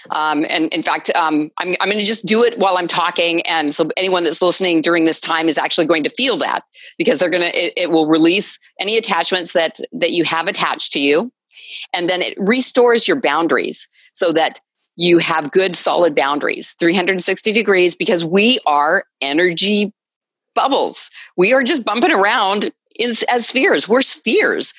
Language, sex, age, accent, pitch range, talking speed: English, female, 40-59, American, 160-210 Hz, 180 wpm